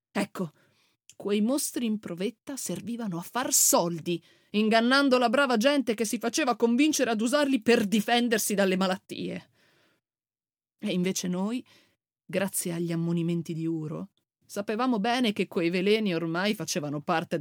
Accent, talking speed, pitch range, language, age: native, 135 wpm, 170-220 Hz, Italian, 30-49